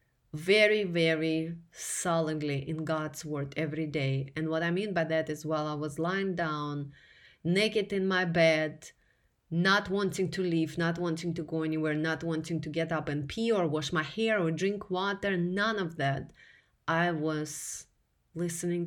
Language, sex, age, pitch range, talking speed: English, female, 30-49, 150-175 Hz, 170 wpm